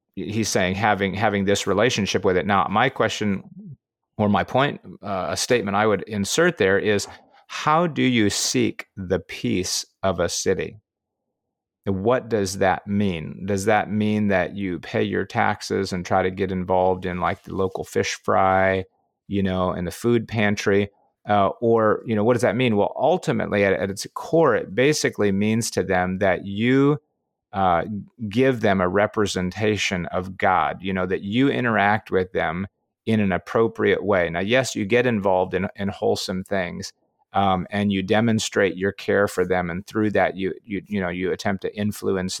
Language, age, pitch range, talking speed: English, 30-49, 95-110 Hz, 180 wpm